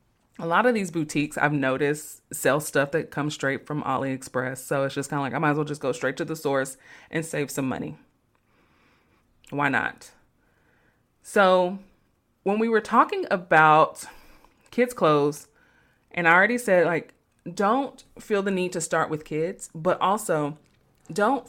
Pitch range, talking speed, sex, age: 145-175 Hz, 170 wpm, female, 20-39